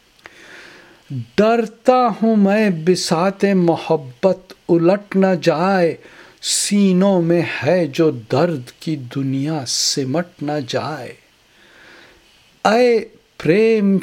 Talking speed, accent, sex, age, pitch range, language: 80 wpm, Indian, male, 60-79, 145-185 Hz, English